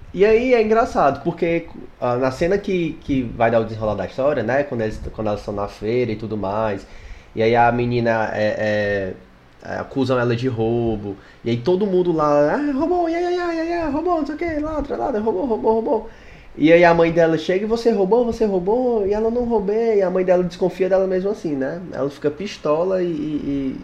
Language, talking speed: Portuguese, 180 wpm